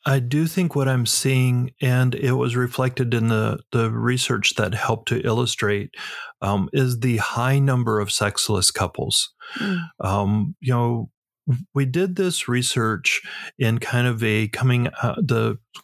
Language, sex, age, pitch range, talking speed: English, male, 40-59, 100-130 Hz, 150 wpm